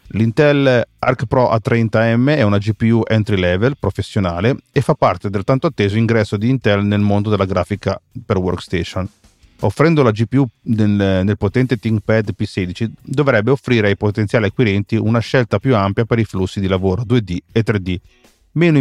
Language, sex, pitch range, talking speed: Italian, male, 100-125 Hz, 160 wpm